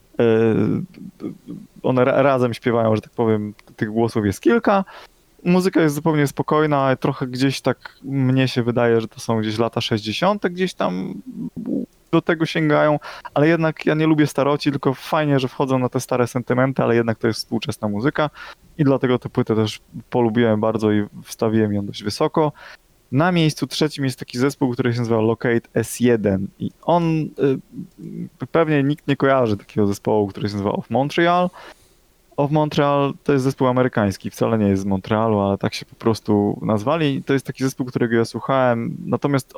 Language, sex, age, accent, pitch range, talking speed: Polish, male, 20-39, native, 115-150 Hz, 170 wpm